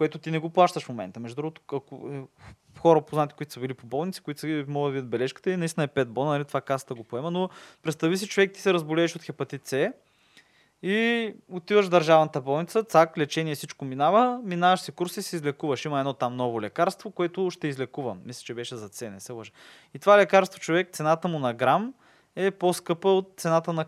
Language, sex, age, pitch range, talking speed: Bulgarian, male, 20-39, 135-175 Hz, 215 wpm